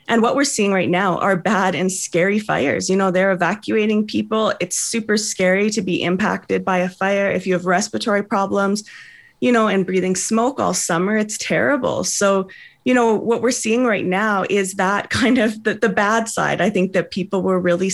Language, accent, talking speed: English, American, 205 wpm